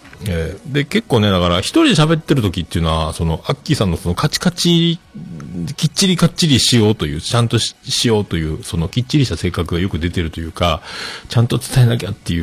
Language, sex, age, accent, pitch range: Japanese, male, 40-59, native, 85-130 Hz